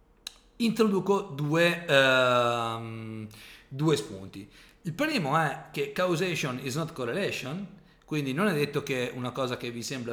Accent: native